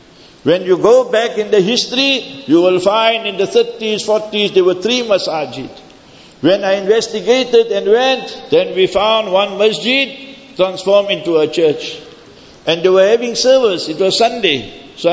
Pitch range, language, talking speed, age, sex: 195-260 Hz, English, 165 wpm, 60-79, male